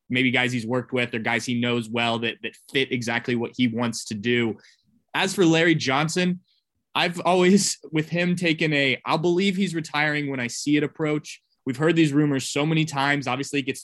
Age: 20-39